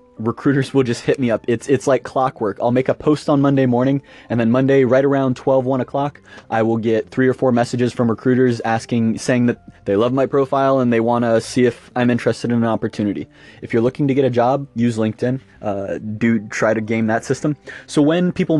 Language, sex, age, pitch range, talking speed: English, male, 20-39, 115-135 Hz, 230 wpm